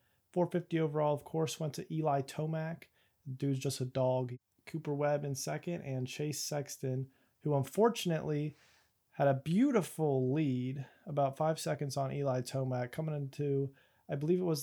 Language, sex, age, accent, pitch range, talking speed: English, male, 20-39, American, 130-145 Hz, 150 wpm